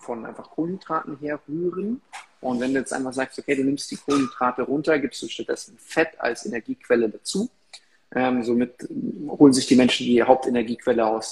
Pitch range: 125-145 Hz